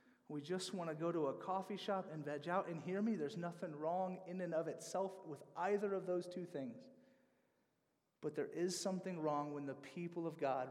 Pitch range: 145-175 Hz